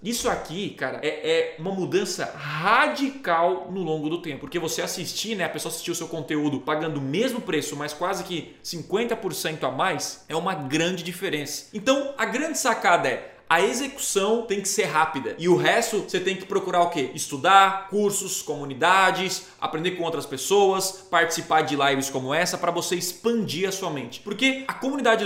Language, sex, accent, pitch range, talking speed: Portuguese, male, Brazilian, 160-200 Hz, 185 wpm